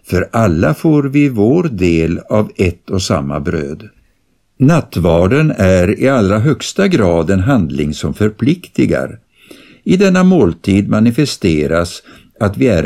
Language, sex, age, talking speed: Swedish, male, 60-79, 130 wpm